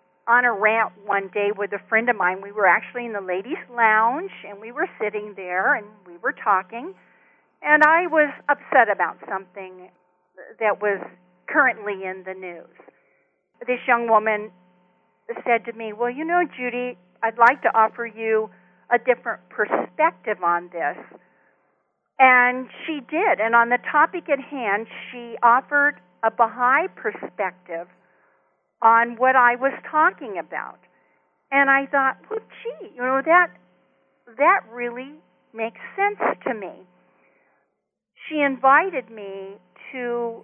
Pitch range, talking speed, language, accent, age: 195-250 Hz, 140 wpm, English, American, 50-69